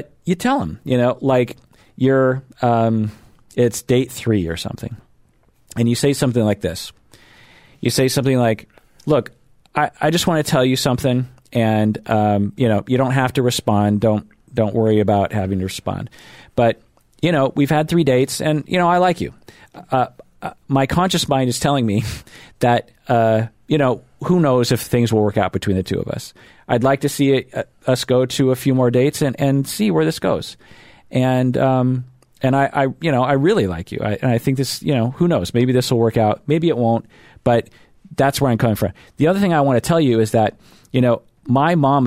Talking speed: 215 wpm